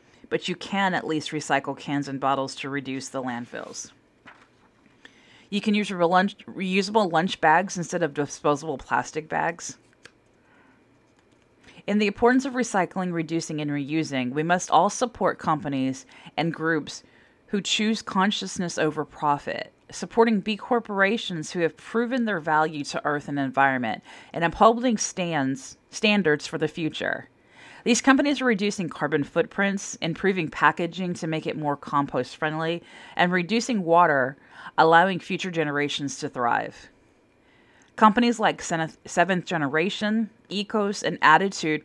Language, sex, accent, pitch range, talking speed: English, female, American, 150-195 Hz, 130 wpm